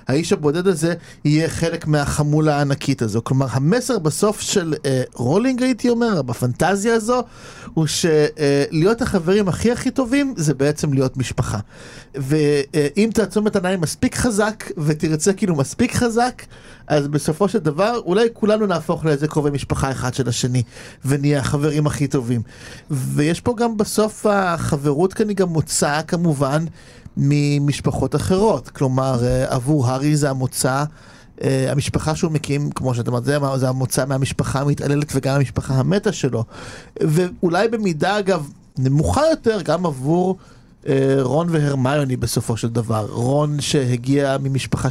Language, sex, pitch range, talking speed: Hebrew, male, 135-180 Hz, 135 wpm